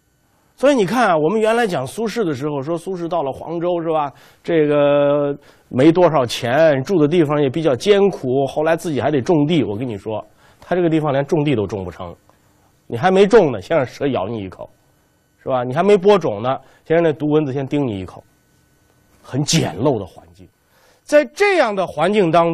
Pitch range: 135-205 Hz